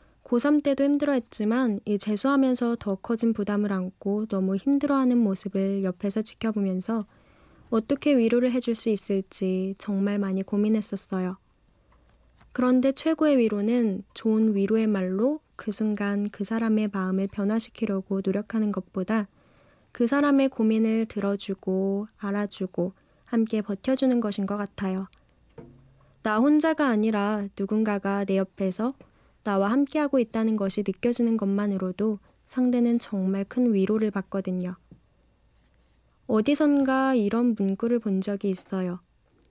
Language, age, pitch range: Korean, 20-39, 195-235 Hz